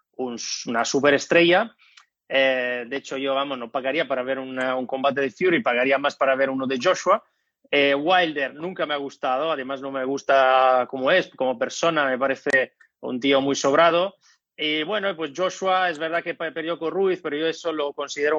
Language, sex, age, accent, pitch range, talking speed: Spanish, male, 30-49, Spanish, 130-160 Hz, 195 wpm